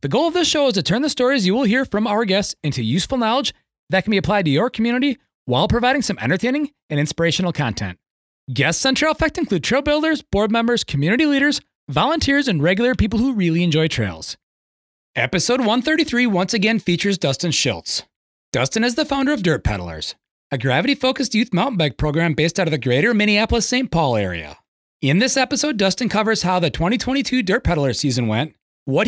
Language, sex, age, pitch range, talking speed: English, male, 30-49, 155-260 Hz, 190 wpm